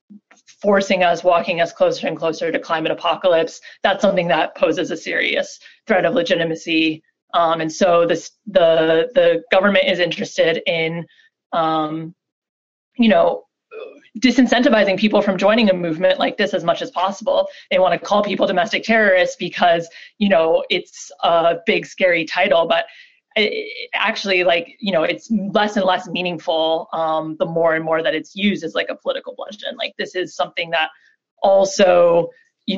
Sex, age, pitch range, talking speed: female, 20-39, 165-225 Hz, 165 wpm